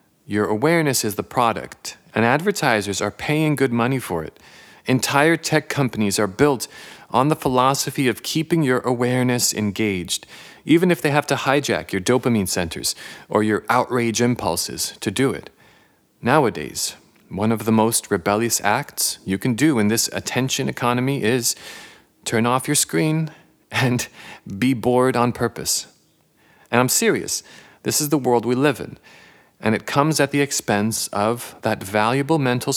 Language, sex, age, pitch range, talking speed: English, male, 40-59, 105-145 Hz, 155 wpm